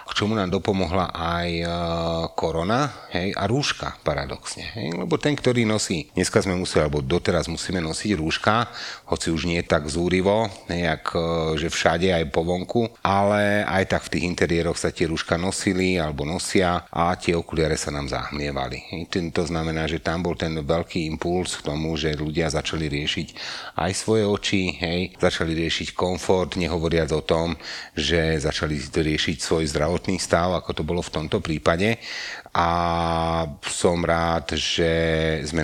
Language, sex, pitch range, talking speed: Slovak, male, 75-90 Hz, 155 wpm